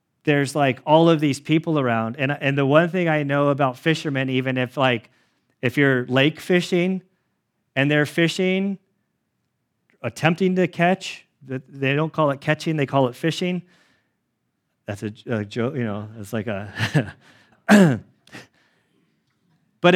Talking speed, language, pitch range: 145 wpm, English, 135-180 Hz